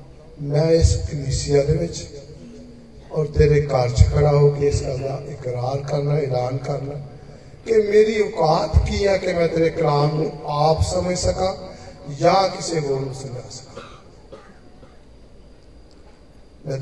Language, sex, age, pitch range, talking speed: Hindi, male, 40-59, 145-195 Hz, 110 wpm